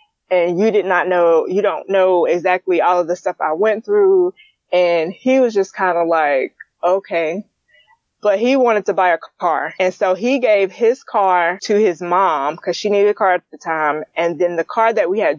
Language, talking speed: English, 215 wpm